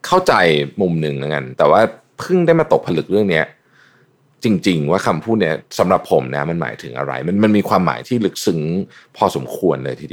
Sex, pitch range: male, 80-120 Hz